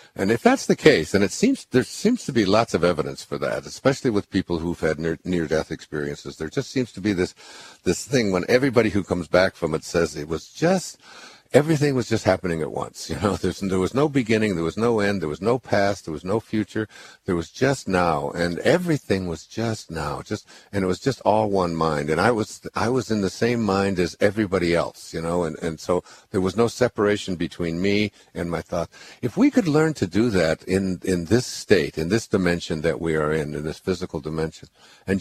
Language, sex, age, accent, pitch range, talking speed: English, male, 60-79, American, 90-125 Hz, 230 wpm